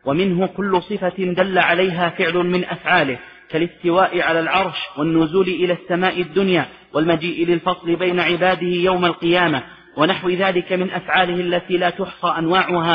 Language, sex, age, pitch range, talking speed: Arabic, male, 40-59, 170-185 Hz, 135 wpm